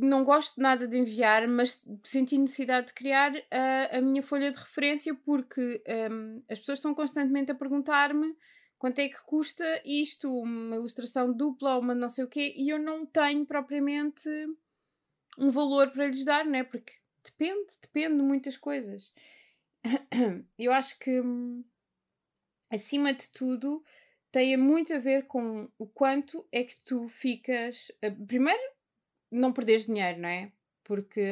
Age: 20-39